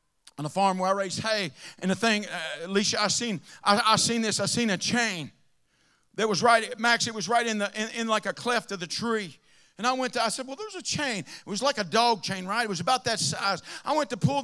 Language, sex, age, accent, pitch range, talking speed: English, male, 50-69, American, 150-215 Hz, 270 wpm